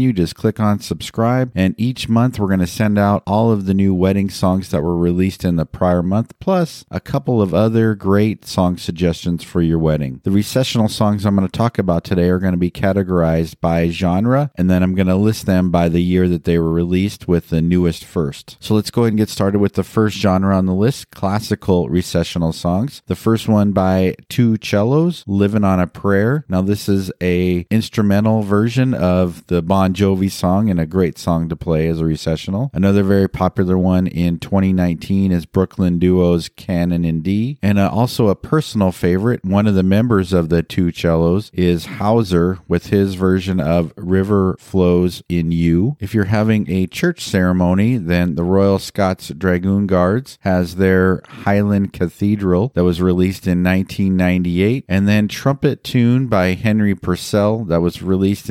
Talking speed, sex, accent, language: 190 wpm, male, American, English